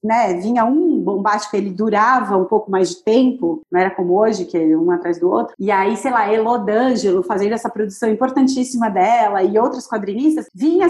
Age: 30-49